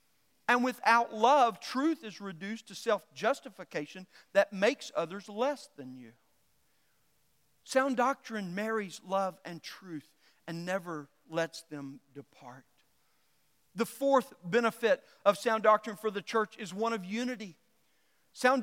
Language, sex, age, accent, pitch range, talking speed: English, male, 40-59, American, 215-270 Hz, 125 wpm